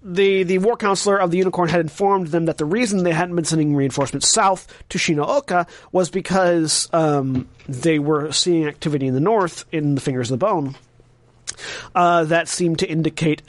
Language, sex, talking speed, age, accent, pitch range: English, male, 185 wpm, 30-49, American, 135-175 Hz